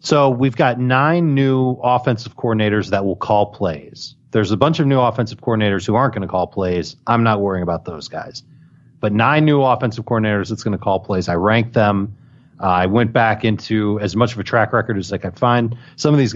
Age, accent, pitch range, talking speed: 40-59, American, 105-130 Hz, 225 wpm